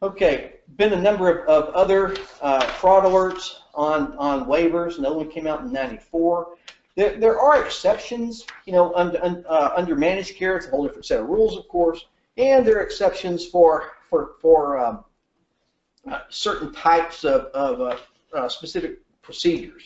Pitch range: 160-255 Hz